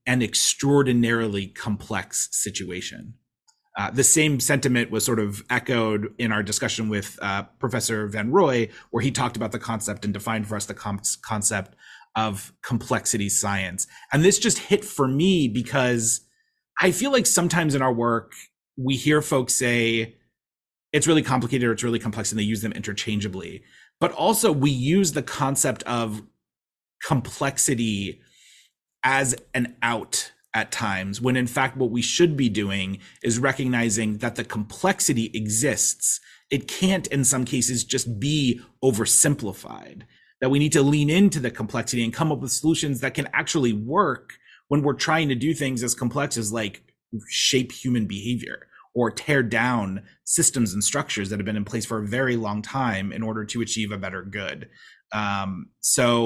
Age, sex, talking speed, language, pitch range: 30-49, male, 165 wpm, English, 110-135 Hz